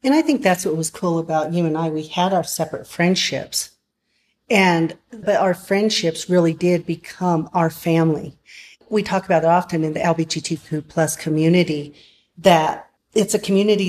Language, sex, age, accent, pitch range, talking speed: English, female, 40-59, American, 165-190 Hz, 175 wpm